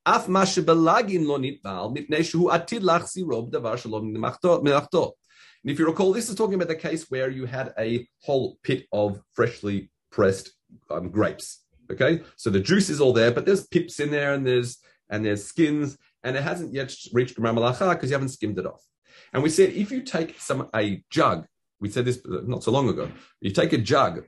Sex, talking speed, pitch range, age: male, 175 wpm, 125-190 Hz, 30-49